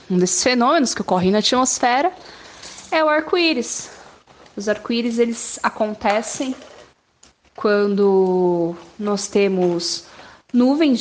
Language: Portuguese